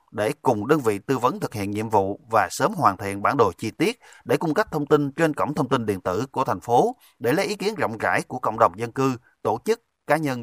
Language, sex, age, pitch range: Vietnamese, male, 30-49, 110-150 Hz